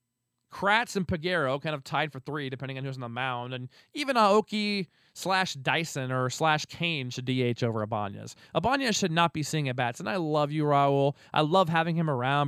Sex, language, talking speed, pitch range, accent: male, English, 205 wpm, 125-160 Hz, American